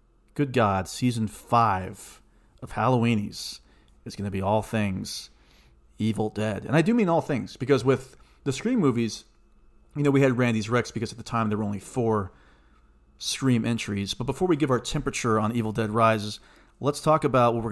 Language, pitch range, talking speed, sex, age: English, 100-125 Hz, 190 wpm, male, 40-59